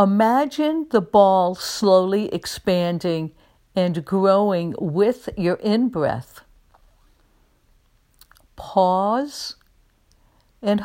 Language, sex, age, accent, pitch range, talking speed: English, female, 60-79, American, 175-230 Hz, 65 wpm